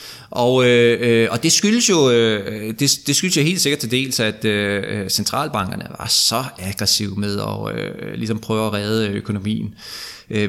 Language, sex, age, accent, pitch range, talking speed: Danish, male, 20-39, native, 110-155 Hz, 175 wpm